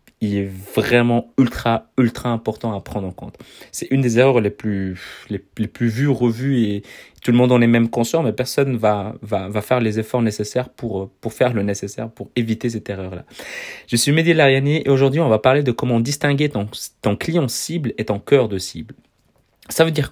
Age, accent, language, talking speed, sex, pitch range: 30-49, French, French, 210 wpm, male, 110-125 Hz